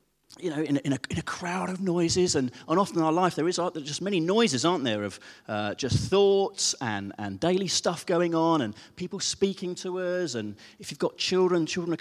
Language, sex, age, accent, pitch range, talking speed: English, male, 30-49, British, 130-185 Hz, 230 wpm